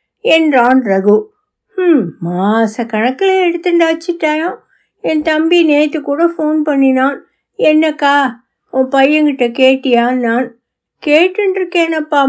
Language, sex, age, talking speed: Tamil, female, 60-79, 85 wpm